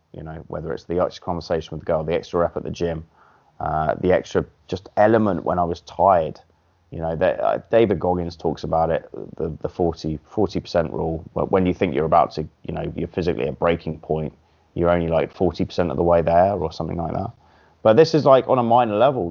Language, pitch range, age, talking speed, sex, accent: English, 85-110 Hz, 30-49, 225 wpm, male, British